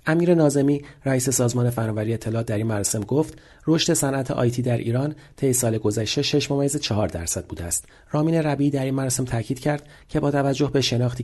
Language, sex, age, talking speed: Persian, male, 40-59, 185 wpm